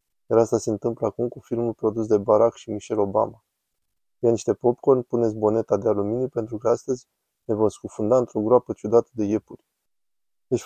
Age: 20-39